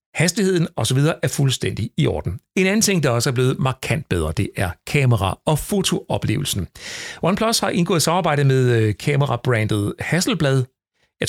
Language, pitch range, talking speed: Danish, 110-145 Hz, 150 wpm